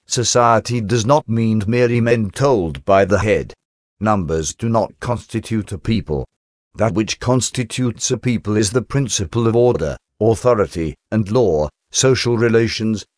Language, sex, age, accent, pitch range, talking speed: English, male, 50-69, British, 105-125 Hz, 140 wpm